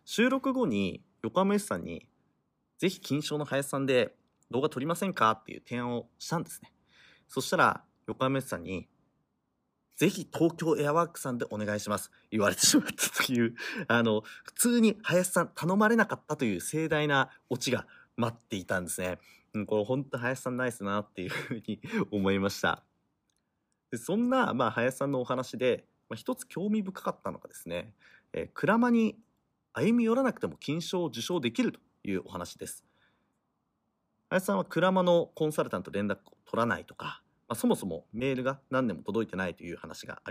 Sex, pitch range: male, 105-175 Hz